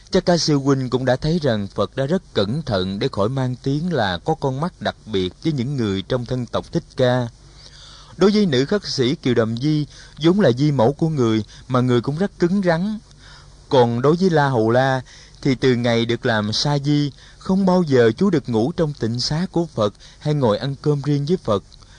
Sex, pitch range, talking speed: male, 120-160 Hz, 225 wpm